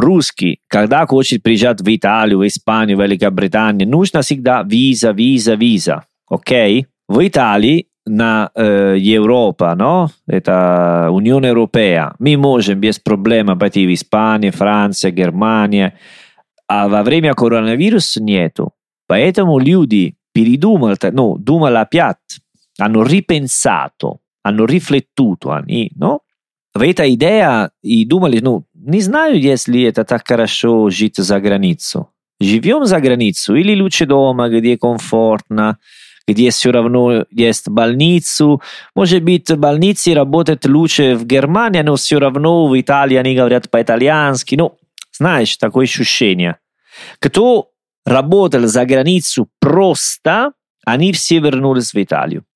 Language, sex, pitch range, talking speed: Russian, male, 110-150 Hz, 125 wpm